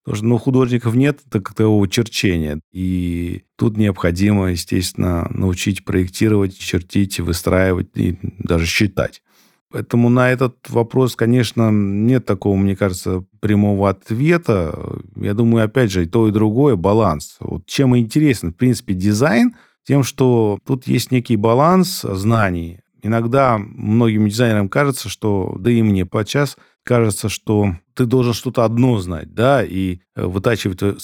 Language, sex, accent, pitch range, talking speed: Russian, male, native, 95-120 Hz, 135 wpm